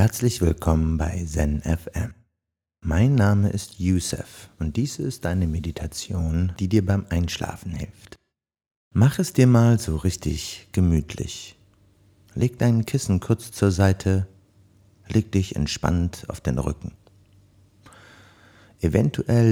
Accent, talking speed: German, 115 wpm